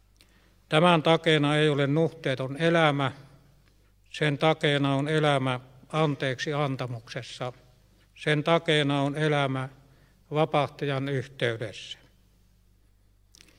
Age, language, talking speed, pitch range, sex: 60-79, Finnish, 80 wpm, 120-160 Hz, male